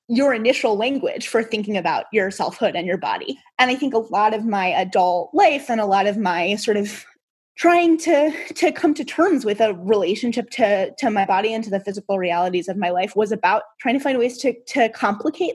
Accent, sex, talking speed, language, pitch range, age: American, female, 220 wpm, English, 195-250 Hz, 20-39